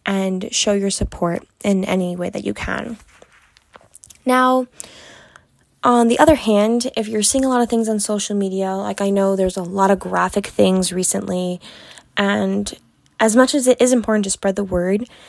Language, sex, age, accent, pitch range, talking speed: English, female, 20-39, American, 190-225 Hz, 180 wpm